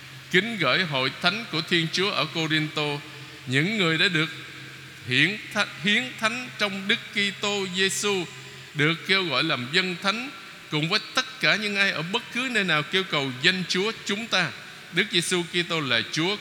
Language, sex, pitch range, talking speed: Vietnamese, male, 130-185 Hz, 175 wpm